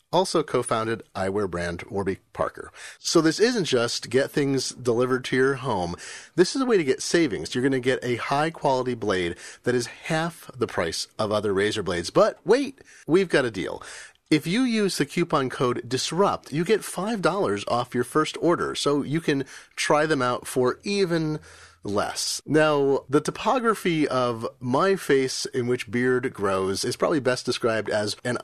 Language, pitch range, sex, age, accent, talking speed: English, 120-165 Hz, male, 30-49, American, 175 wpm